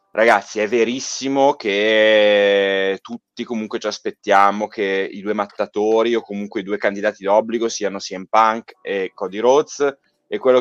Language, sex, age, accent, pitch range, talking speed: Italian, male, 30-49, native, 105-130 Hz, 145 wpm